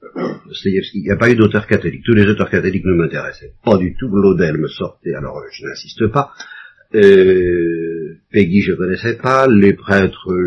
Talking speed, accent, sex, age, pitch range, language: 180 wpm, French, male, 50-69, 95-140 Hz, French